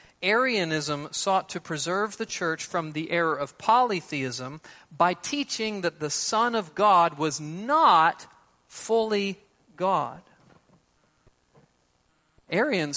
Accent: American